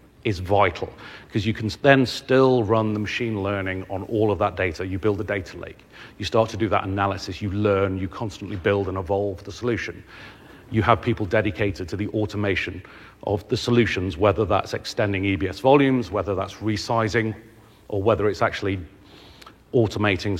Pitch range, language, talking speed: 95-110 Hz, English, 175 wpm